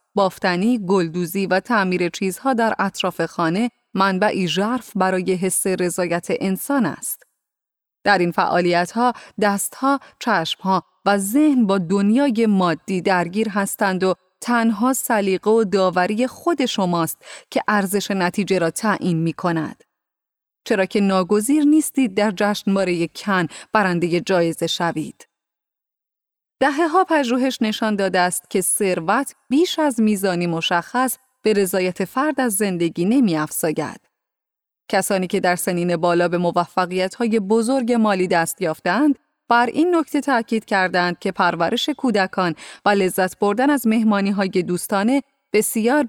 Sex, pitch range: female, 180-230 Hz